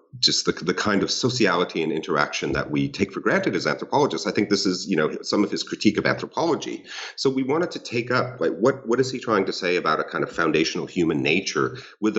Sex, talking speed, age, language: male, 240 wpm, 40-59, English